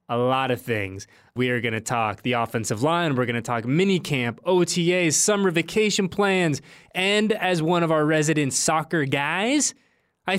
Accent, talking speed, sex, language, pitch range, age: American, 180 wpm, male, English, 125-185 Hz, 20-39